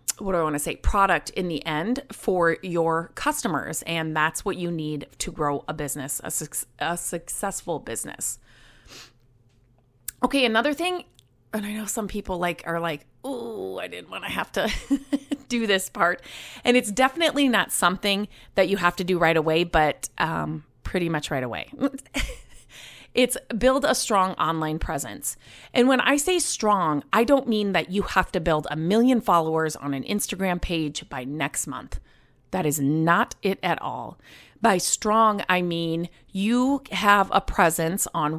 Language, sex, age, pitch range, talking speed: English, female, 30-49, 155-225 Hz, 170 wpm